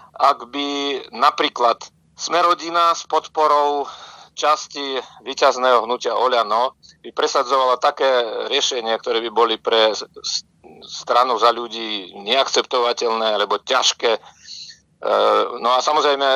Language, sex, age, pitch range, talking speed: Slovak, male, 50-69, 125-150 Hz, 100 wpm